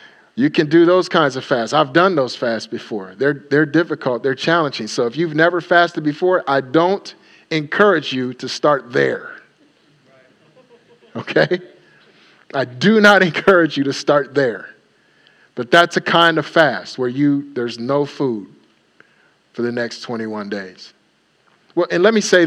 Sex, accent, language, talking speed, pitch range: male, American, English, 160 wpm, 120-165 Hz